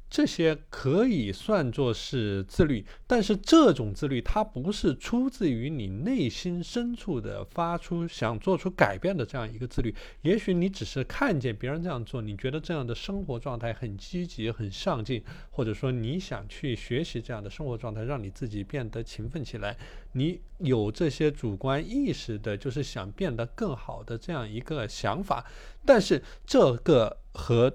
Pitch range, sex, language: 115-170 Hz, male, Chinese